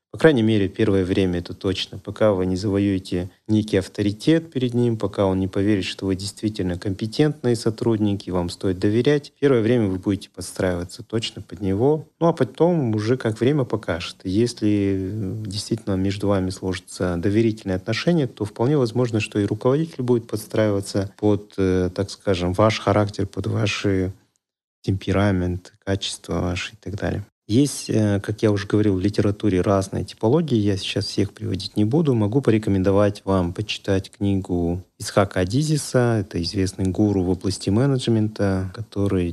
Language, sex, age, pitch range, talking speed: Russian, male, 30-49, 95-115 Hz, 150 wpm